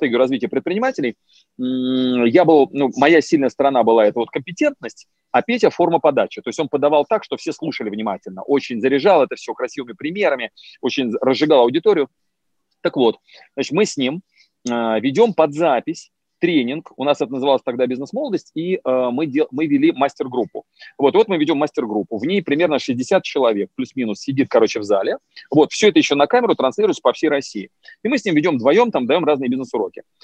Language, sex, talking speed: Russian, male, 185 wpm